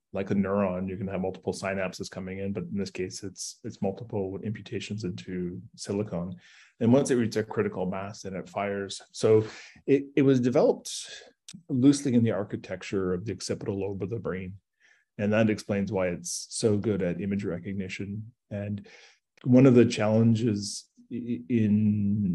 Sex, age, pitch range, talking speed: male, 30-49, 95-115 Hz, 165 wpm